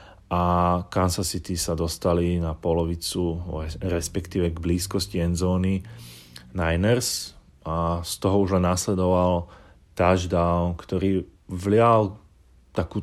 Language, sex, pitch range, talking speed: Slovak, male, 85-100 Hz, 95 wpm